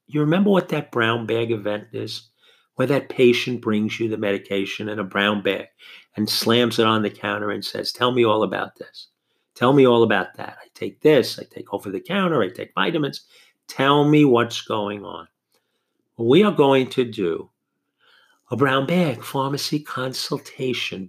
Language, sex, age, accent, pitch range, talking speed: English, male, 50-69, American, 110-140 Hz, 180 wpm